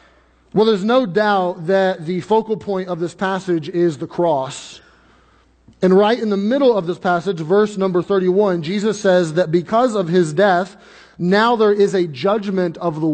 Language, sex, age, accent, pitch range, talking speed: English, male, 30-49, American, 180-215 Hz, 180 wpm